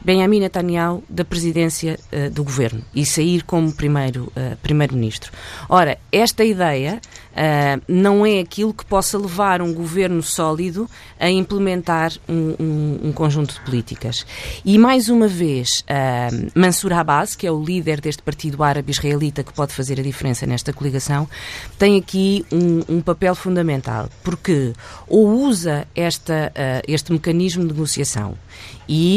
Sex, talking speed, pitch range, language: female, 145 wpm, 135-180 Hz, Portuguese